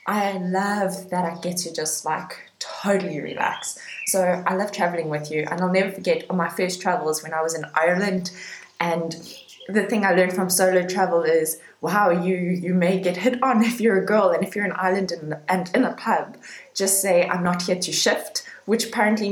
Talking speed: 210 wpm